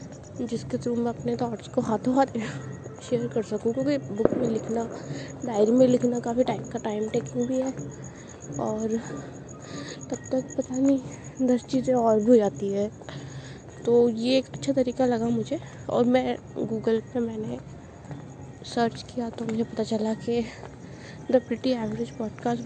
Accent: native